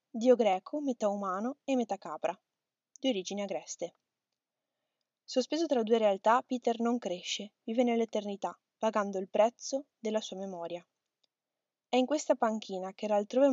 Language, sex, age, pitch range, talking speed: Italian, female, 20-39, 195-240 Hz, 140 wpm